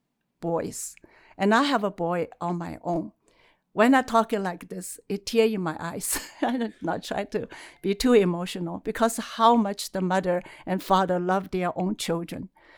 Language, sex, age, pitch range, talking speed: English, female, 60-79, 195-240 Hz, 175 wpm